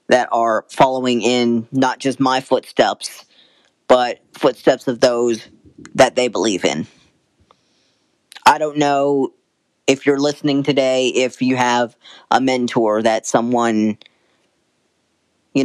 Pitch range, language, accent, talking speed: 115-140 Hz, English, American, 120 wpm